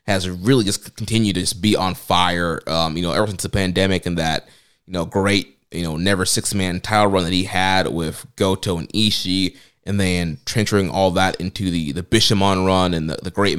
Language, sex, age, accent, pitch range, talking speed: English, male, 20-39, American, 90-105 Hz, 210 wpm